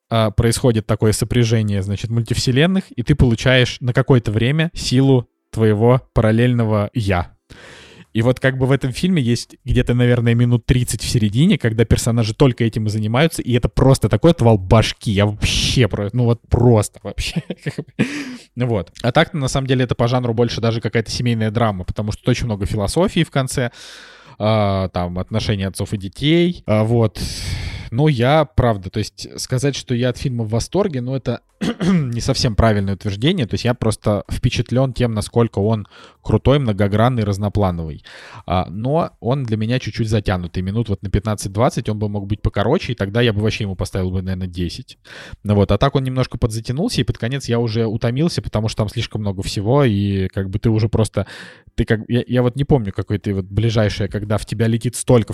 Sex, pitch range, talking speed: male, 105-125 Hz, 180 wpm